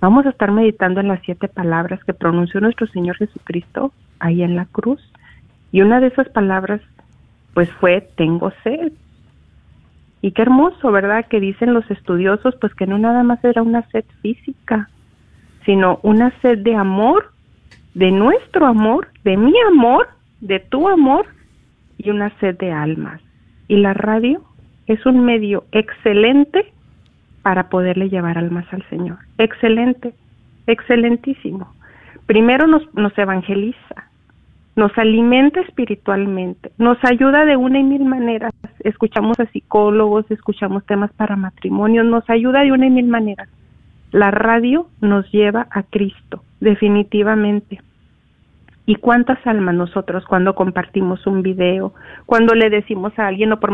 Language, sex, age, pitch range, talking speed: Spanish, female, 40-59, 195-240 Hz, 140 wpm